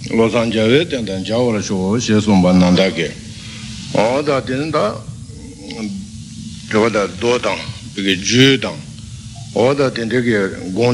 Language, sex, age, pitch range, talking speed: Italian, male, 60-79, 100-125 Hz, 100 wpm